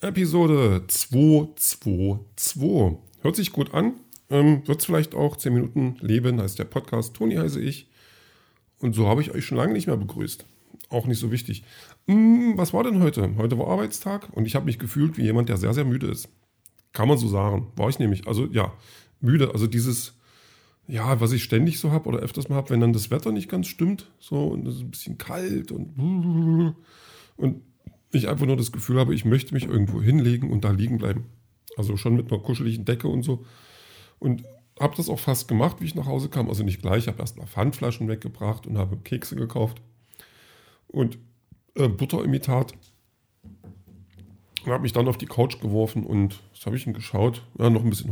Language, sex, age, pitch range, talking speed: German, male, 40-59, 110-135 Hz, 200 wpm